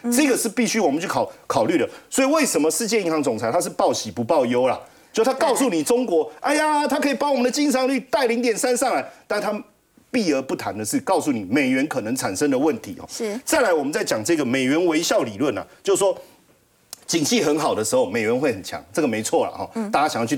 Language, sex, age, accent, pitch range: Chinese, male, 40-59, native, 190-275 Hz